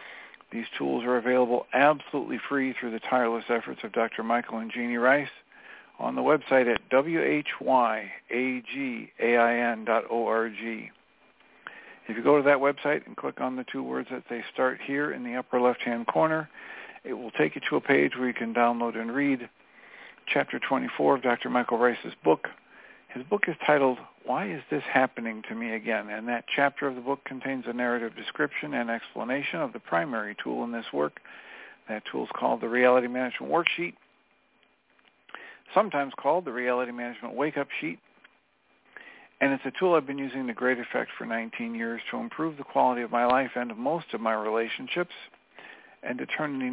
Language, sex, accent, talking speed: English, male, American, 175 wpm